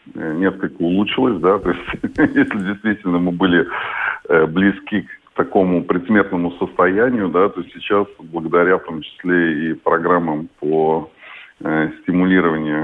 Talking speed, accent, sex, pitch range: 115 wpm, native, male, 85-105 Hz